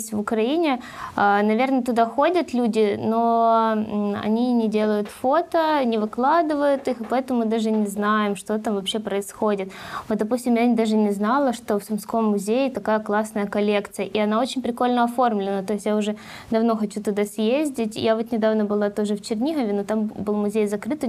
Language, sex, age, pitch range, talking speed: Ukrainian, female, 20-39, 210-250 Hz, 180 wpm